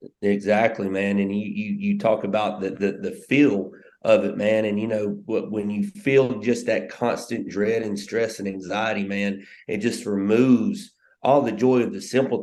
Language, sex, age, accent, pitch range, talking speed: English, male, 30-49, American, 100-115 Hz, 195 wpm